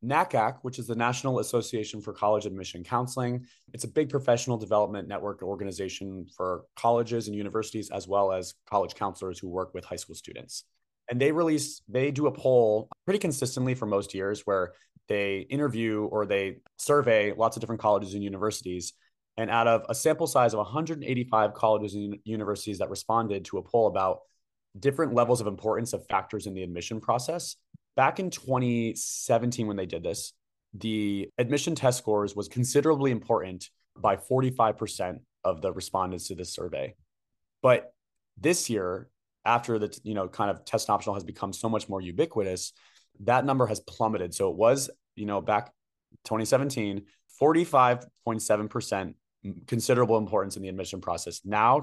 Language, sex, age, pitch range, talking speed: English, male, 30-49, 100-125 Hz, 165 wpm